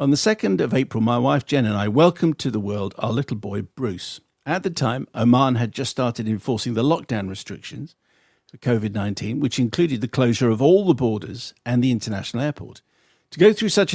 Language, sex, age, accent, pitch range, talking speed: English, male, 50-69, British, 110-145 Hz, 200 wpm